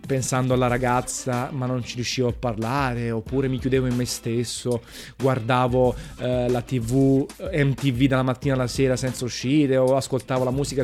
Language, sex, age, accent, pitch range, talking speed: Italian, male, 20-39, native, 125-145 Hz, 165 wpm